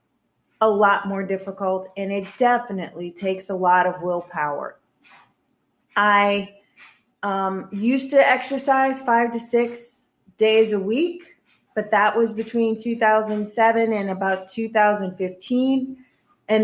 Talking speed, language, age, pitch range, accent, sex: 115 wpm, English, 30-49, 195-235 Hz, American, female